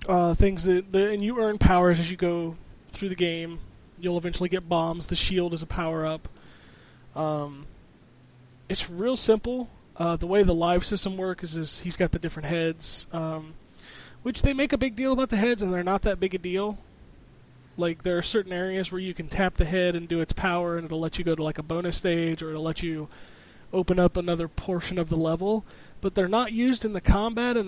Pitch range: 160-195 Hz